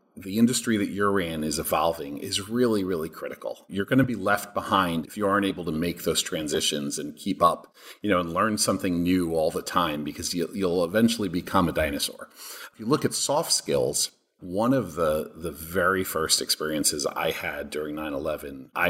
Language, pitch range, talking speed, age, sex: English, 80-100 Hz, 190 wpm, 40-59, male